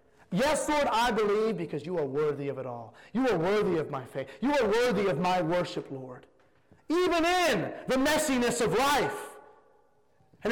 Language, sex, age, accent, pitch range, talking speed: English, male, 30-49, American, 220-280 Hz, 175 wpm